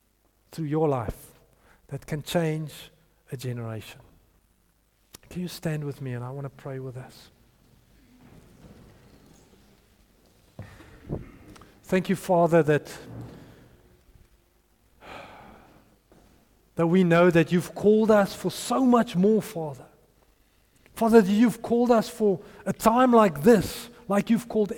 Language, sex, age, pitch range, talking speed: English, male, 50-69, 135-220 Hz, 120 wpm